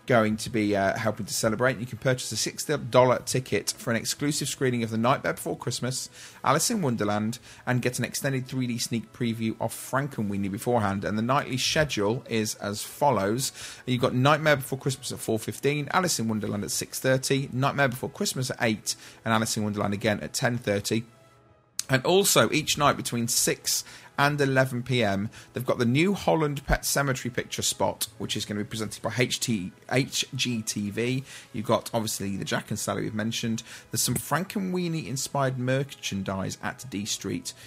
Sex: male